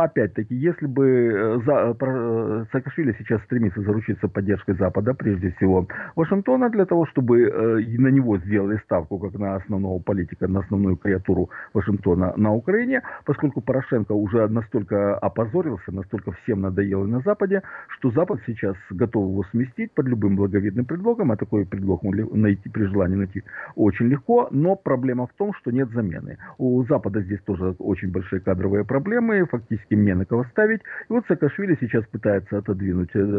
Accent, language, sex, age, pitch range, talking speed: native, Russian, male, 50-69, 95-130 Hz, 155 wpm